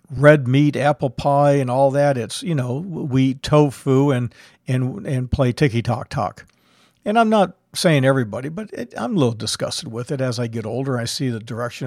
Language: English